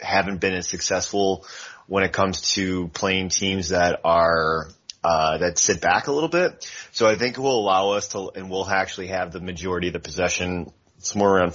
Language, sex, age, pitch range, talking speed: English, male, 30-49, 85-95 Hz, 205 wpm